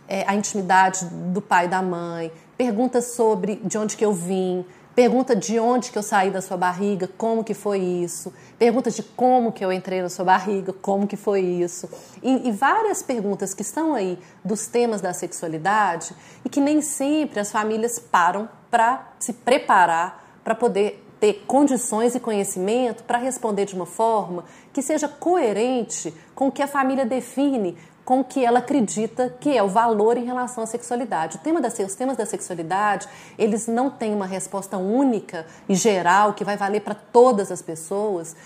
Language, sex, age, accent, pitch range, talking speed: Portuguese, female, 40-59, Brazilian, 185-240 Hz, 185 wpm